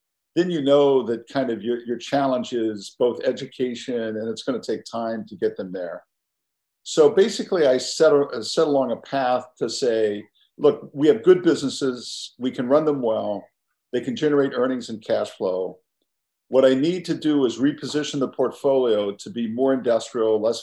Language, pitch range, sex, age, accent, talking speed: English, 120-145 Hz, male, 50-69, American, 185 wpm